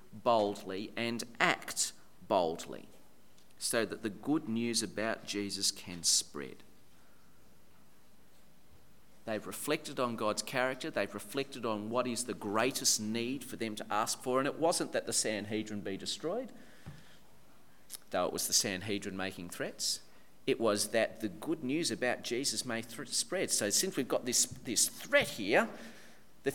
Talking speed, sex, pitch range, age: 150 wpm, male, 110-155 Hz, 40-59